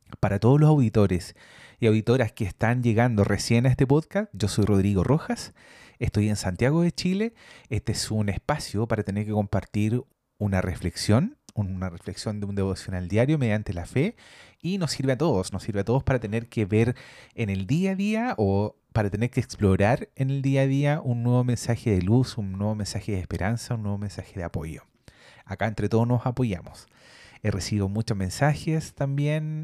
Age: 30-49